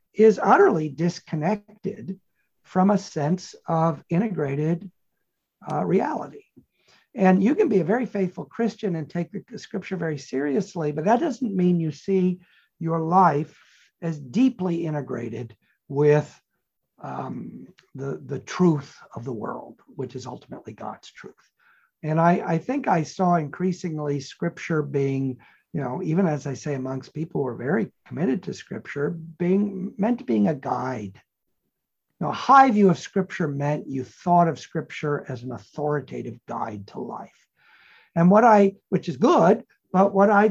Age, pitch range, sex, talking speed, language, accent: 60-79, 155-210 Hz, male, 150 wpm, English, American